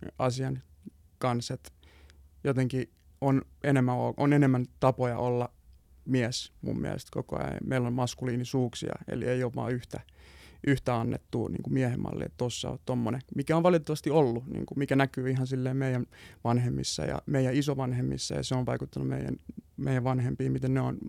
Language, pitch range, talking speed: Finnish, 120-135 Hz, 155 wpm